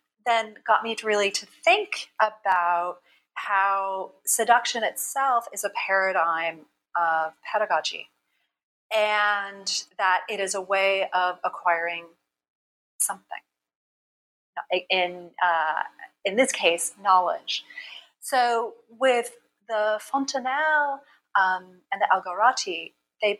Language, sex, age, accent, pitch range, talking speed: English, female, 40-59, American, 175-245 Hz, 105 wpm